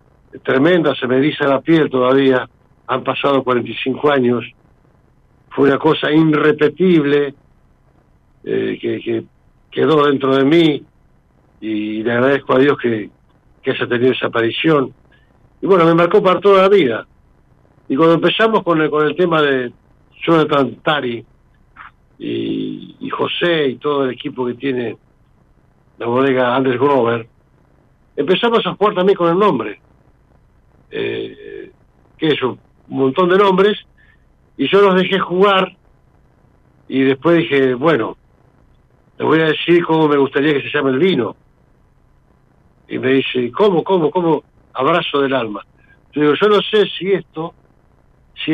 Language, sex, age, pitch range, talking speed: Spanish, male, 60-79, 130-175 Hz, 145 wpm